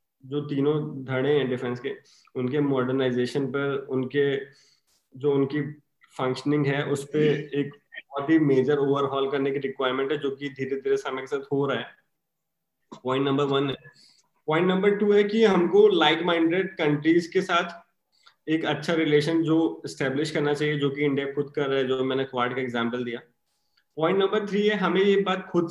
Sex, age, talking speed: male, 20-39, 180 wpm